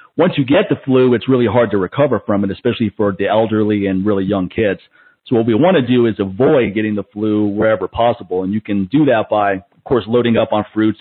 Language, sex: English, male